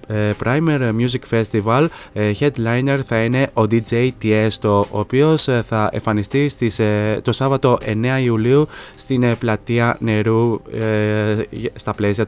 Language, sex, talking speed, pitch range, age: Greek, male, 110 wpm, 105-120 Hz, 20-39